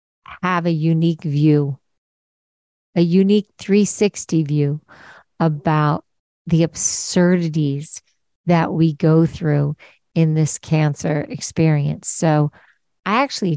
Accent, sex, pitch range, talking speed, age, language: American, female, 155-195 Hz, 95 wpm, 50-69, English